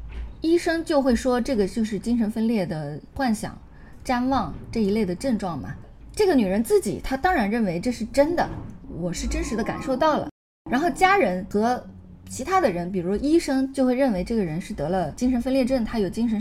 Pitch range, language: 185-265 Hz, Chinese